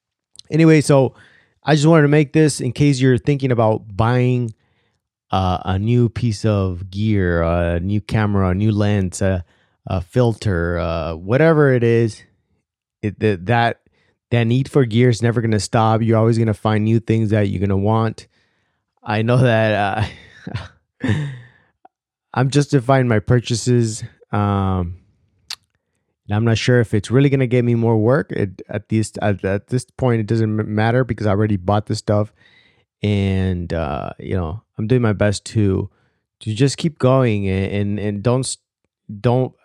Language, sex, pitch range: English, male, 100-125 Hz